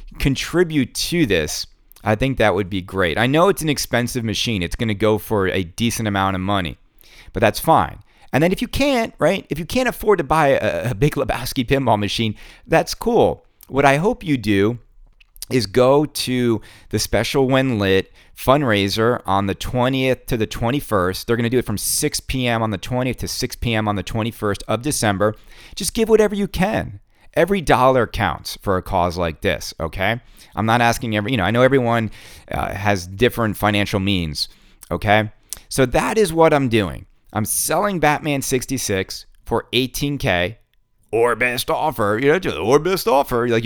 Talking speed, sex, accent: 185 wpm, male, American